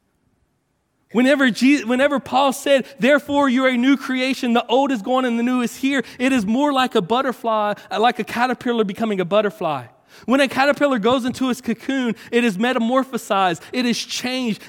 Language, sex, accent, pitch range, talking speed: English, male, American, 215-260 Hz, 180 wpm